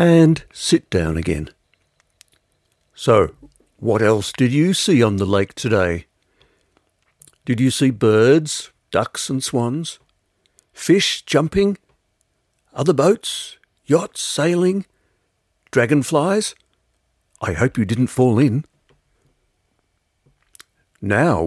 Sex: male